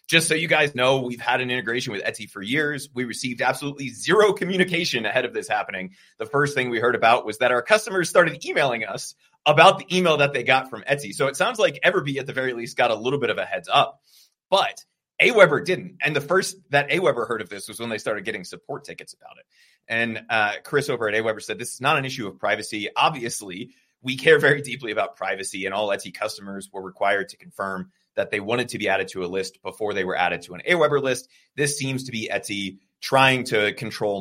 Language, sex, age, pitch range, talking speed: English, male, 30-49, 110-150 Hz, 235 wpm